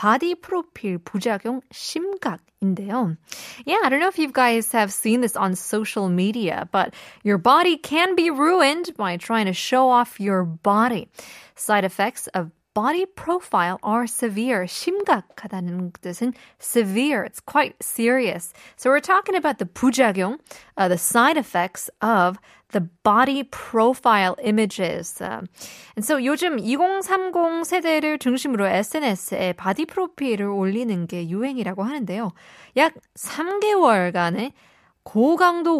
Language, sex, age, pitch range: Korean, female, 20-39, 195-280 Hz